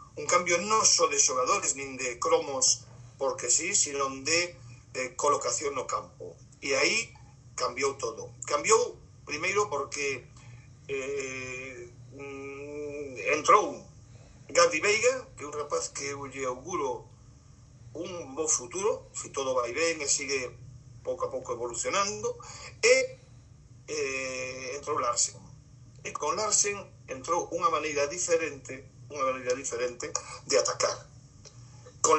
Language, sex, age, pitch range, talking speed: Spanish, male, 50-69, 125-205 Hz, 130 wpm